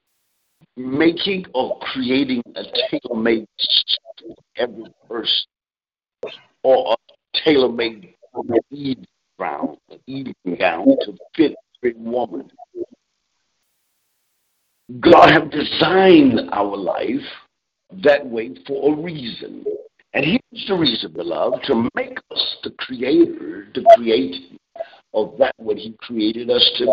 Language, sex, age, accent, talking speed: English, male, 60-79, American, 115 wpm